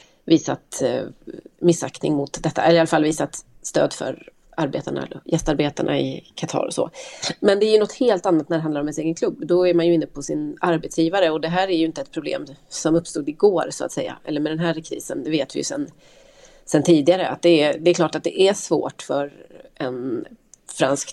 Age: 30-49